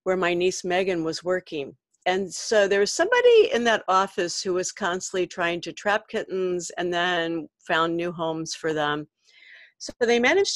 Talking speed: 175 wpm